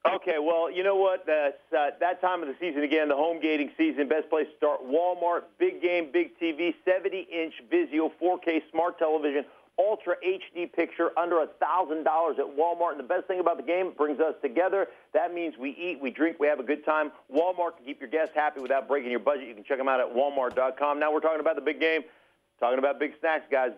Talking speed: 225 wpm